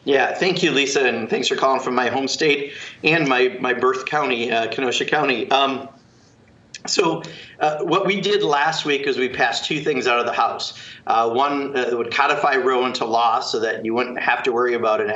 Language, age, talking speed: English, 50-69, 215 wpm